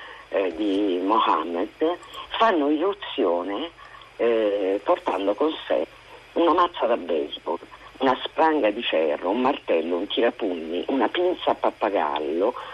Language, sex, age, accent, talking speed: Italian, female, 50-69, native, 110 wpm